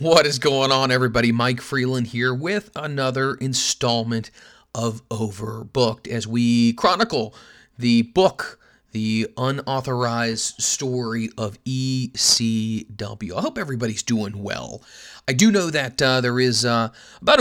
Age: 30-49